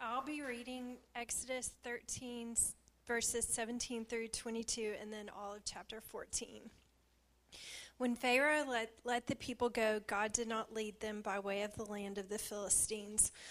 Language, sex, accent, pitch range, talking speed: English, female, American, 210-235 Hz, 155 wpm